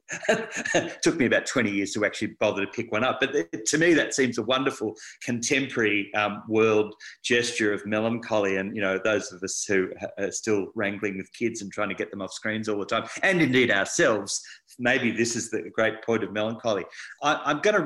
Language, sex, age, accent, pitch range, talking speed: English, male, 40-59, Australian, 100-125 Hz, 210 wpm